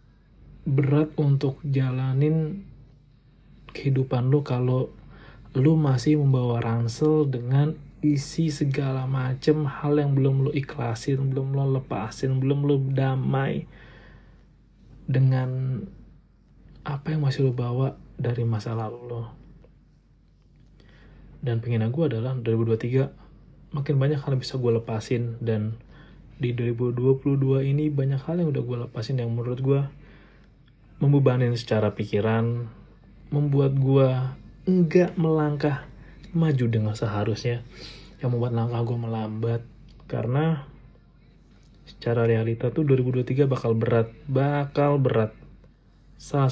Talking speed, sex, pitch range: 110 wpm, male, 120-145 Hz